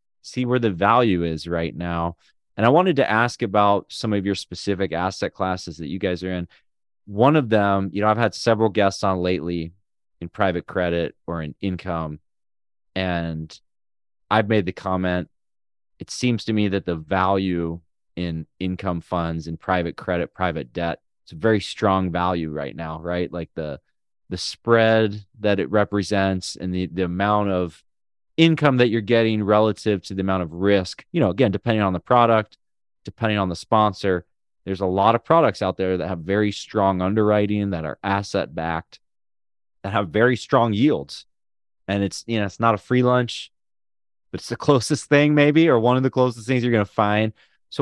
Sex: male